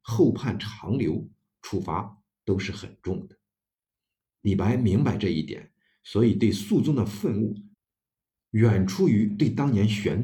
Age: 50-69